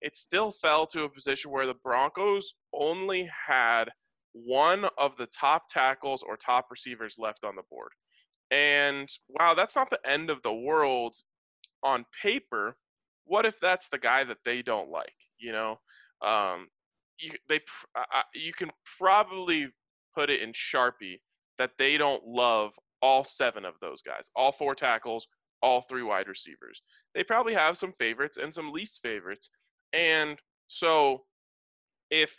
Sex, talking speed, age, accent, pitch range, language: male, 155 wpm, 20-39, American, 130-185 Hz, English